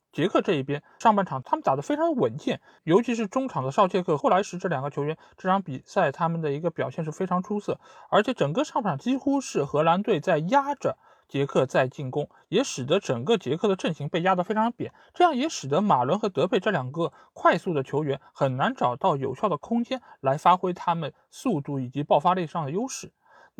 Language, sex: Chinese, male